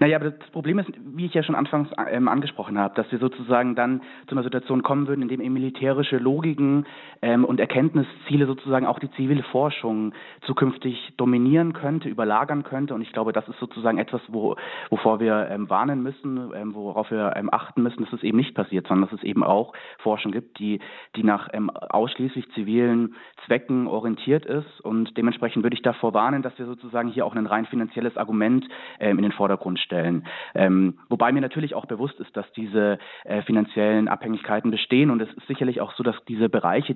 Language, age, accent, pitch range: German, 30-49, German, 110-130 Hz